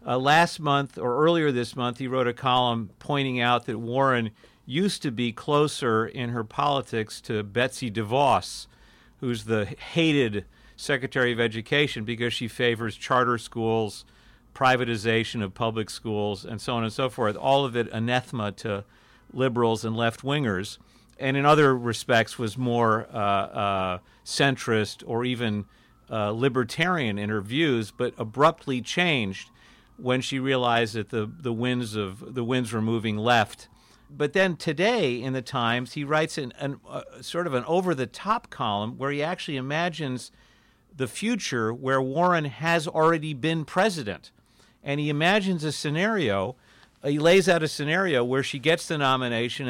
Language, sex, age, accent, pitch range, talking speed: English, male, 50-69, American, 115-150 Hz, 160 wpm